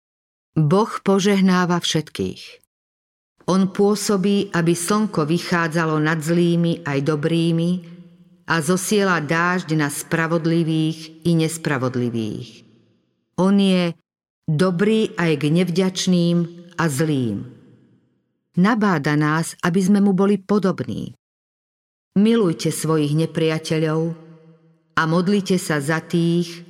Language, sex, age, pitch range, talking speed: Slovak, female, 50-69, 155-185 Hz, 95 wpm